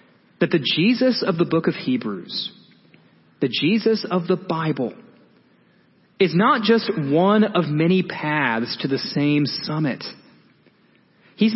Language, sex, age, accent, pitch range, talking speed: English, male, 30-49, American, 160-215 Hz, 130 wpm